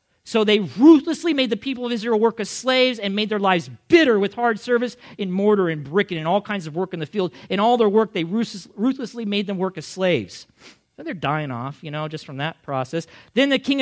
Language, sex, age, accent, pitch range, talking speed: English, male, 40-59, American, 150-220 Hz, 250 wpm